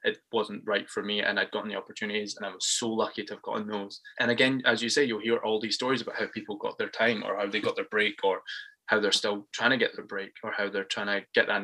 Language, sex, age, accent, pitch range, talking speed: English, male, 20-39, British, 105-130 Hz, 295 wpm